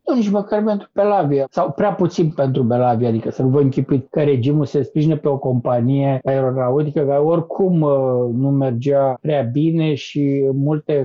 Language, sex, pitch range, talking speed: Romanian, male, 145-200 Hz, 170 wpm